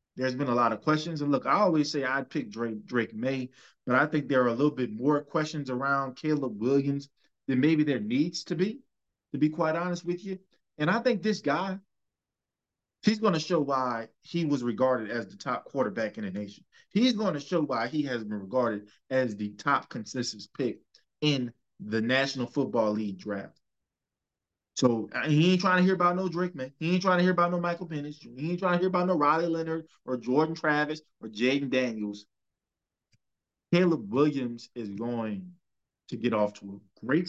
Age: 20-39